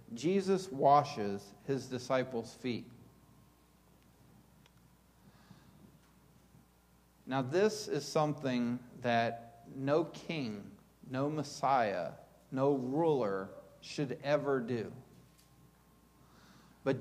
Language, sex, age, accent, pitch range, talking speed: English, male, 50-69, American, 115-150 Hz, 70 wpm